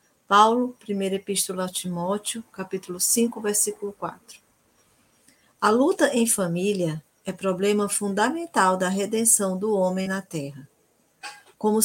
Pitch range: 185-225 Hz